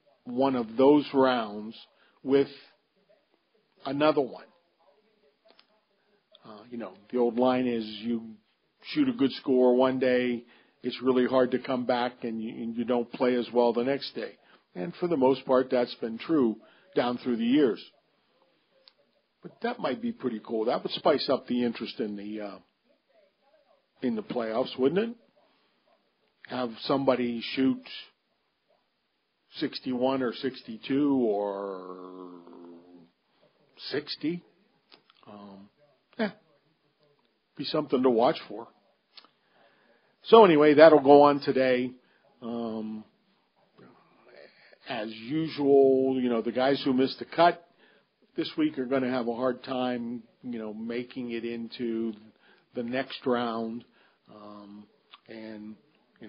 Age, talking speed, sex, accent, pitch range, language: 50-69, 130 wpm, male, American, 115-145 Hz, English